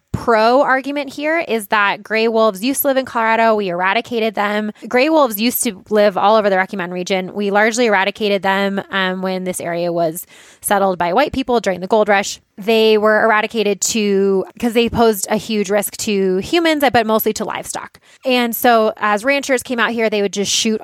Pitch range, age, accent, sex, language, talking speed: 200-230 Hz, 20-39, American, female, English, 200 wpm